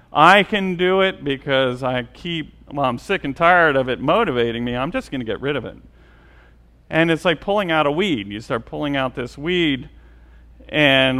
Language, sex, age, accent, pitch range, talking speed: English, male, 40-59, American, 130-175 Hz, 205 wpm